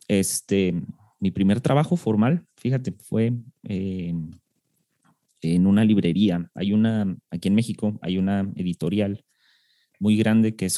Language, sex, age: Spanish, male, 30-49